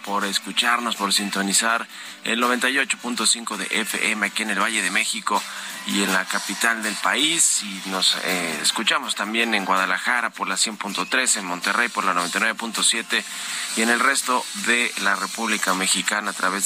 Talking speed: 160 wpm